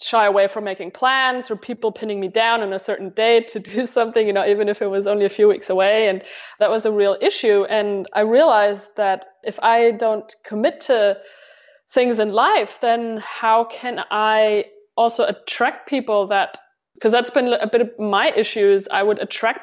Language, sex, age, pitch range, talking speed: English, female, 20-39, 200-235 Hz, 200 wpm